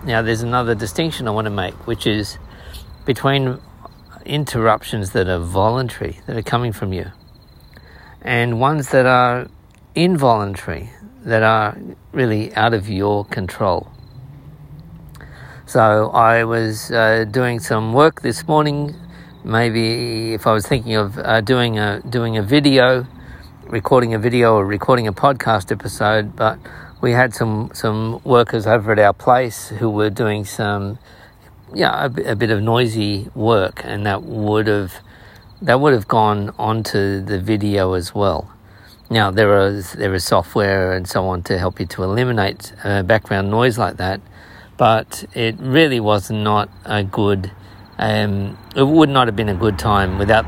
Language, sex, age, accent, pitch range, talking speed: English, male, 50-69, Australian, 100-120 Hz, 155 wpm